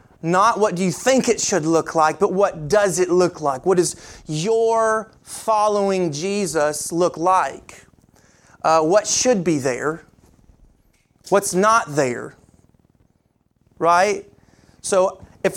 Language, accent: English, American